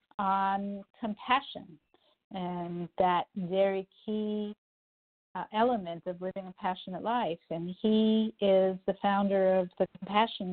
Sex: female